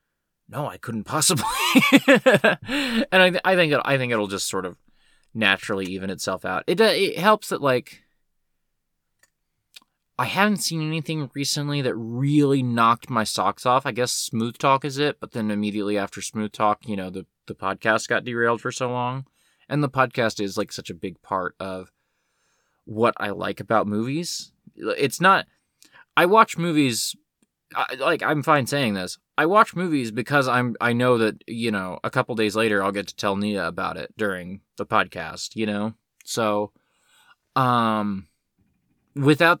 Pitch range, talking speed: 105-150 Hz, 165 wpm